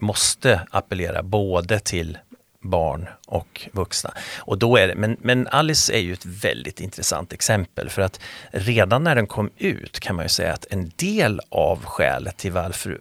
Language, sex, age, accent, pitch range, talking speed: Swedish, male, 40-59, native, 90-105 Hz, 155 wpm